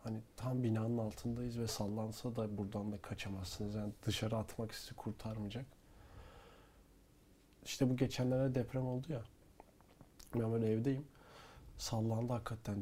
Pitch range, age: 105-125 Hz, 40-59